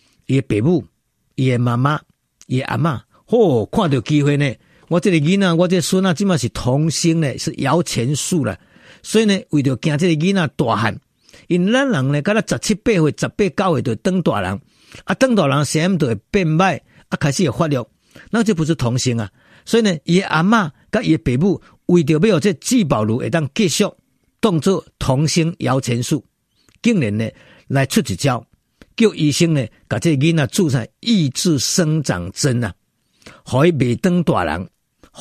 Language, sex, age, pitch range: Chinese, male, 50-69, 120-175 Hz